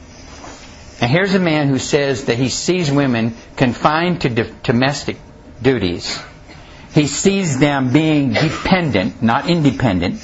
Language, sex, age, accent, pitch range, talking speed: English, male, 60-79, American, 95-150 Hz, 125 wpm